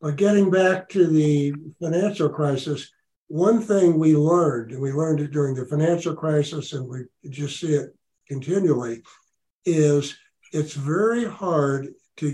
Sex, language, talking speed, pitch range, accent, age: male, English, 145 wpm, 145-175 Hz, American, 60-79